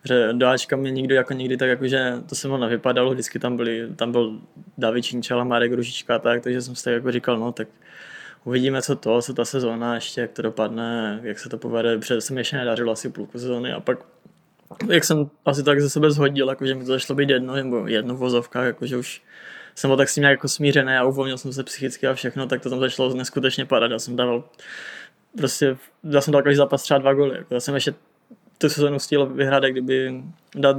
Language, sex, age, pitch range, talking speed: English, male, 20-39, 125-140 Hz, 220 wpm